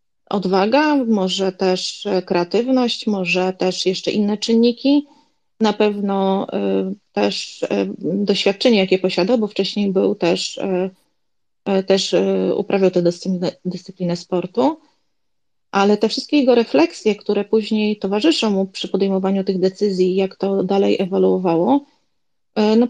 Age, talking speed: 30-49, 110 wpm